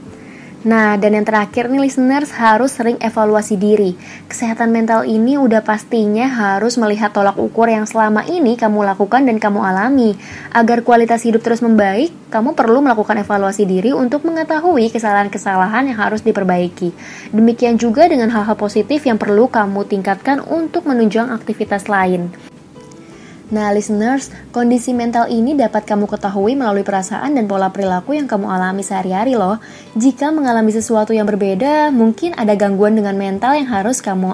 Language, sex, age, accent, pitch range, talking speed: Indonesian, female, 20-39, native, 205-250 Hz, 150 wpm